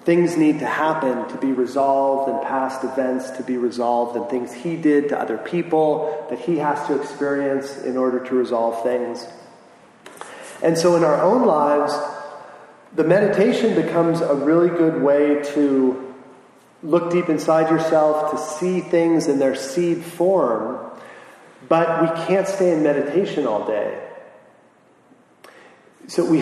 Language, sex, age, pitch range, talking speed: English, male, 30-49, 130-160 Hz, 150 wpm